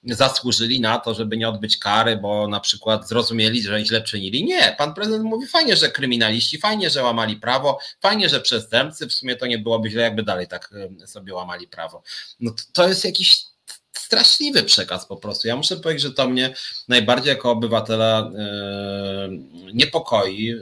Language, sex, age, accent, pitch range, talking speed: Polish, male, 30-49, native, 105-135 Hz, 170 wpm